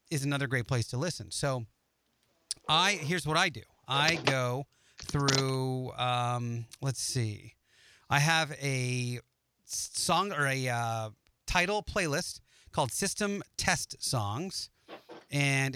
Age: 30-49